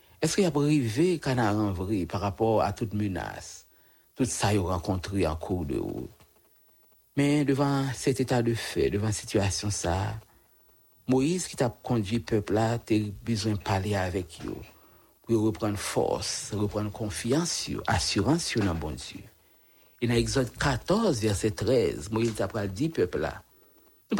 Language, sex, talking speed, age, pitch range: English, male, 165 wpm, 60-79, 105-155 Hz